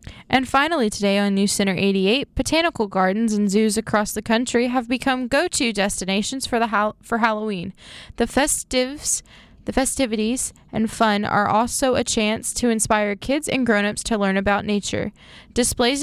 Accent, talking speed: American, 170 wpm